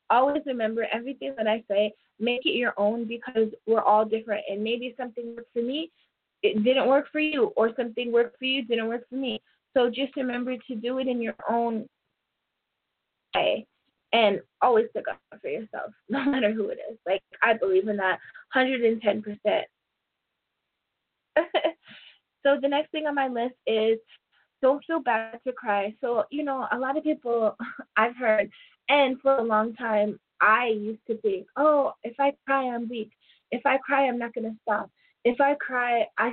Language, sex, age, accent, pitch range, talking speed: English, female, 20-39, American, 220-270 Hz, 180 wpm